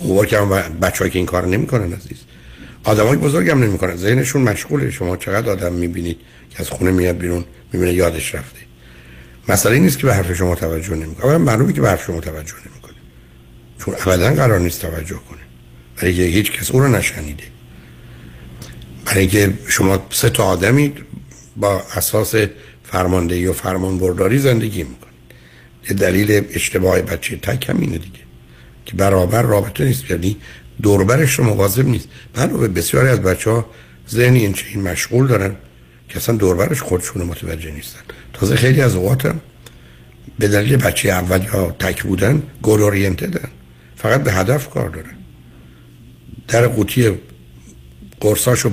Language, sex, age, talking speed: Persian, male, 60-79, 145 wpm